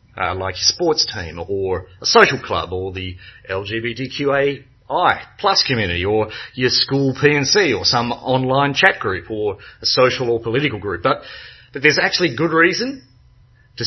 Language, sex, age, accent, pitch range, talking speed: English, male, 40-59, Australian, 115-150 Hz, 155 wpm